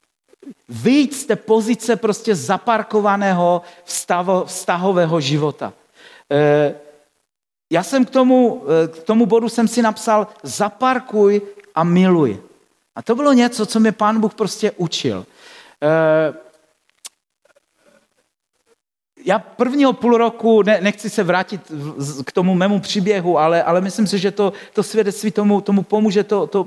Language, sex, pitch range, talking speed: Czech, male, 170-215 Hz, 130 wpm